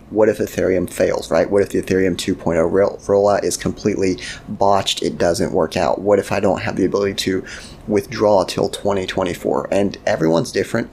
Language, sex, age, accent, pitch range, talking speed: English, male, 30-49, American, 90-110 Hz, 175 wpm